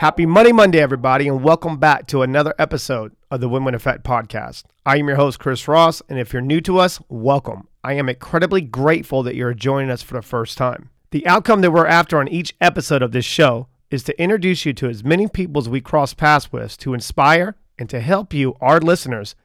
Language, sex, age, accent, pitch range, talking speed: English, male, 40-59, American, 130-165 Hz, 220 wpm